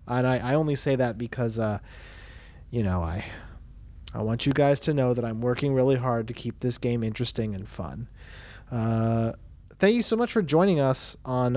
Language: English